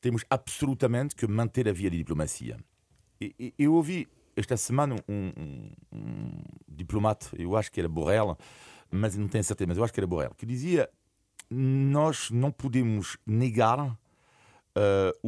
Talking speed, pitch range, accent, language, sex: 155 wpm, 100-135 Hz, French, Portuguese, male